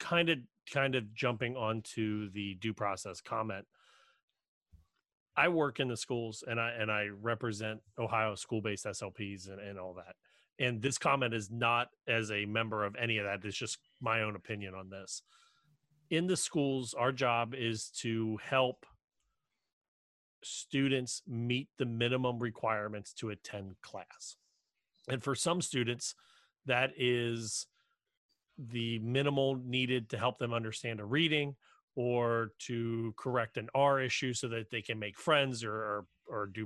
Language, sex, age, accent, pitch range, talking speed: English, male, 30-49, American, 110-130 Hz, 150 wpm